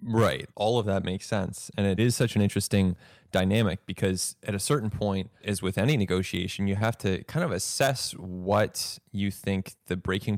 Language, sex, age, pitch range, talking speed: English, male, 20-39, 95-115 Hz, 190 wpm